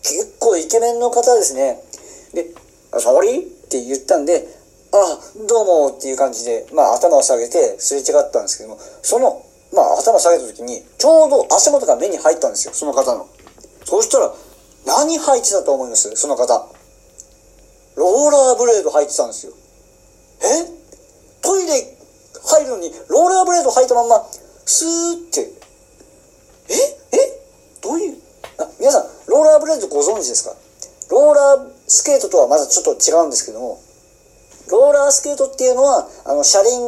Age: 40-59